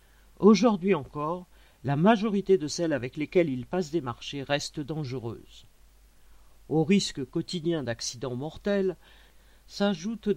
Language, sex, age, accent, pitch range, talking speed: French, male, 50-69, French, 135-190 Hz, 115 wpm